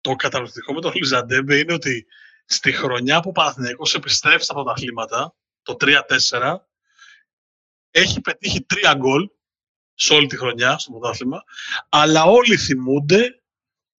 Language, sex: Greek, male